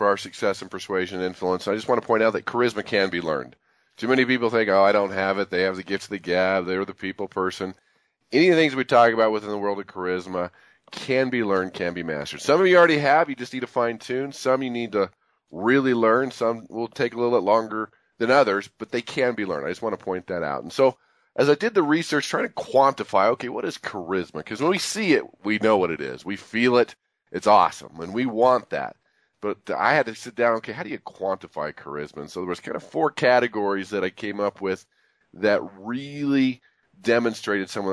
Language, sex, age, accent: English, male, 40-59, American